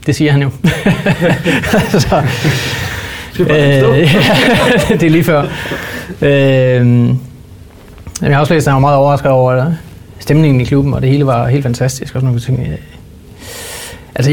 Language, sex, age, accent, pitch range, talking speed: Danish, male, 30-49, native, 125-150 Hz, 125 wpm